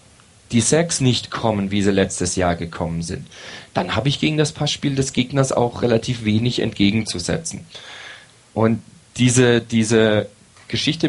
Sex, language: male, German